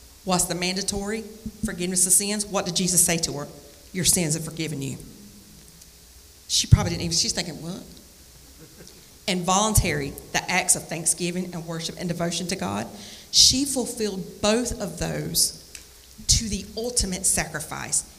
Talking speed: 150 wpm